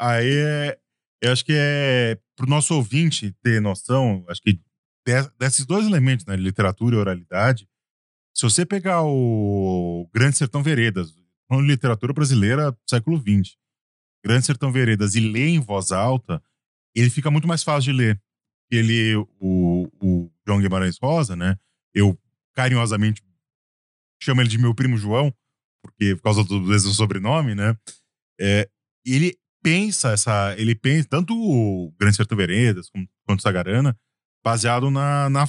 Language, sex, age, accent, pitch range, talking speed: Portuguese, male, 20-39, Brazilian, 100-140 Hz, 145 wpm